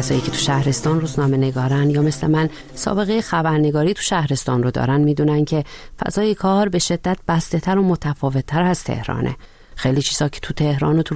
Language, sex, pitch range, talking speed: Persian, female, 130-155 Hz, 190 wpm